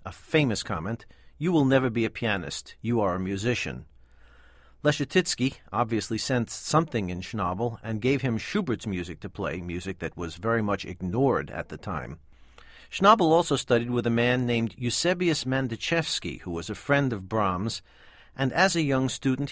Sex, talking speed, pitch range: male, 170 wpm, 95-130 Hz